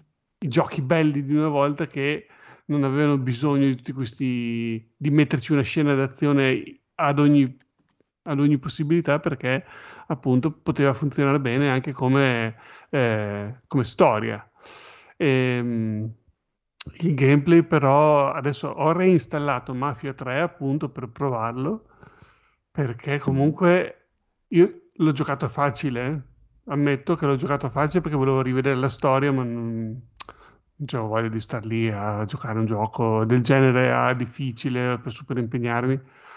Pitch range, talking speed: 125-150 Hz, 130 wpm